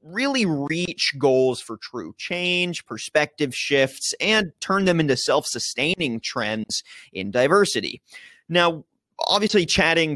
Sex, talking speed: male, 110 wpm